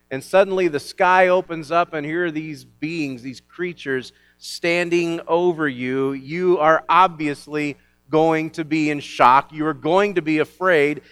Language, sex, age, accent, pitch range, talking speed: English, male, 40-59, American, 140-180 Hz, 160 wpm